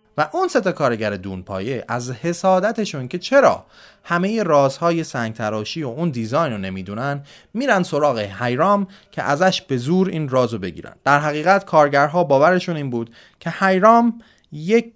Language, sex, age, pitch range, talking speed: Persian, male, 30-49, 115-185 Hz, 155 wpm